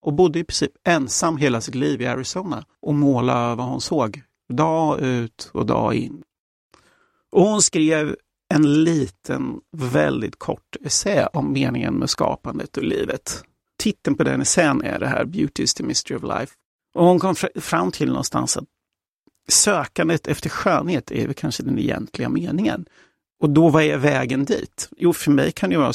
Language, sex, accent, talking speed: Swedish, male, native, 170 wpm